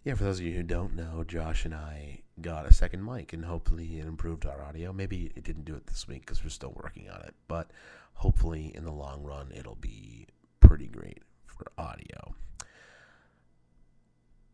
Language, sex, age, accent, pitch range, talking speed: English, male, 30-49, American, 75-85 Hz, 195 wpm